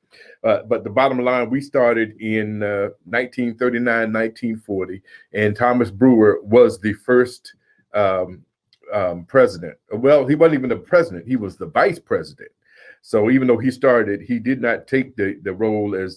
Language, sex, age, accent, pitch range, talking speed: English, male, 40-59, American, 105-130 Hz, 165 wpm